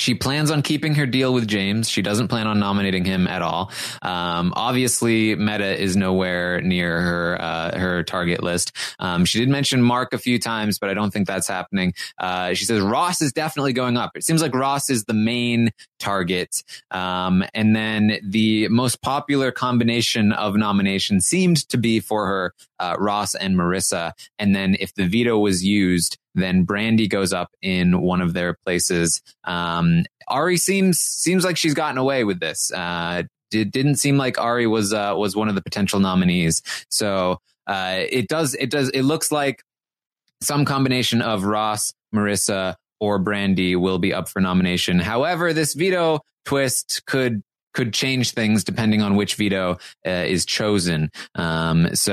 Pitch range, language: 95-130 Hz, English